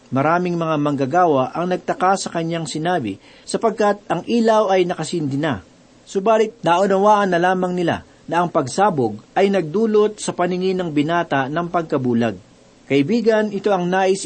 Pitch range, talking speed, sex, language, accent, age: 150-195 Hz, 145 wpm, male, Filipino, native, 50-69